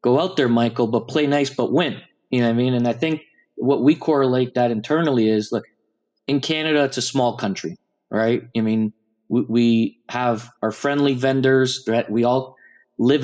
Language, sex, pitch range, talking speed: English, male, 115-135 Hz, 200 wpm